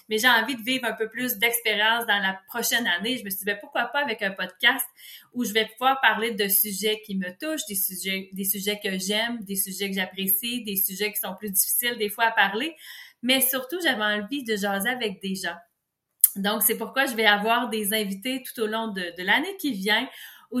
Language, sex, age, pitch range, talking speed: French, female, 30-49, 200-245 Hz, 225 wpm